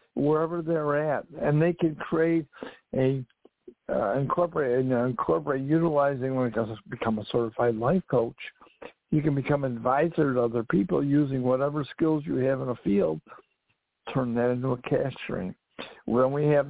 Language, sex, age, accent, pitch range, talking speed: English, male, 60-79, American, 125-155 Hz, 165 wpm